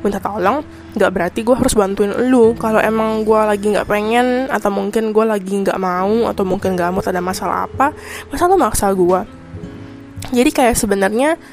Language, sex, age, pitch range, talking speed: Indonesian, female, 10-29, 185-220 Hz, 175 wpm